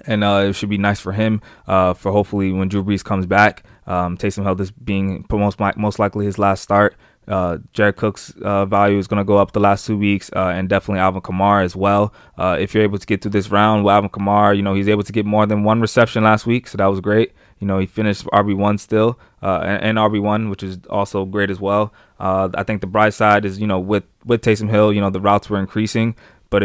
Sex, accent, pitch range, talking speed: male, American, 95-105 Hz, 255 wpm